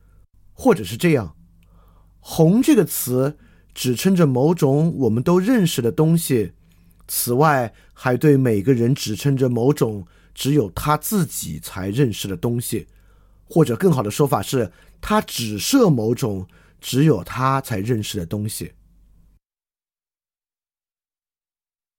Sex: male